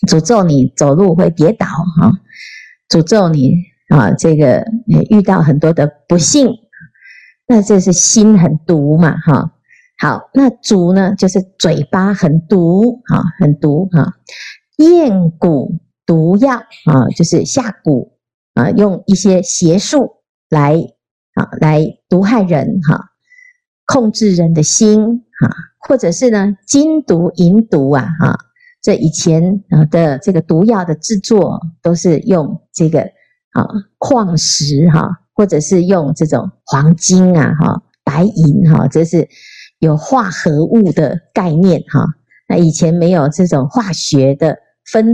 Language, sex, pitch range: Chinese, female, 160-210 Hz